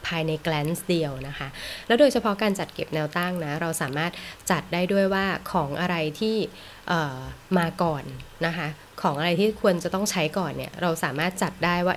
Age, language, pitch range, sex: 20-39, Thai, 155-190 Hz, female